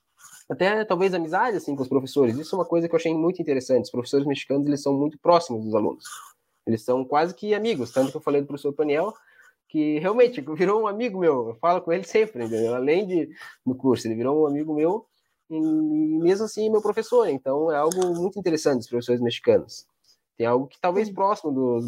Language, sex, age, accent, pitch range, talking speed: Portuguese, male, 20-39, Brazilian, 130-175 Hz, 215 wpm